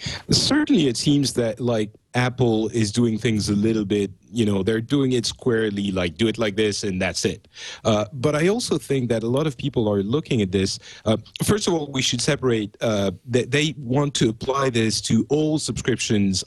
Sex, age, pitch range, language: male, 40-59, 100-125 Hz, English